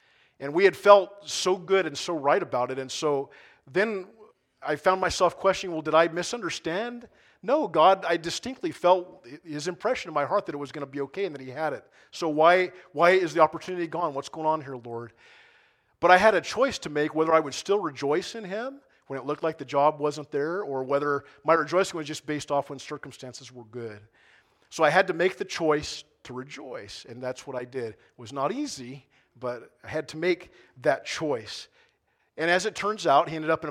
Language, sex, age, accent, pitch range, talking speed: English, male, 40-59, American, 135-180 Hz, 220 wpm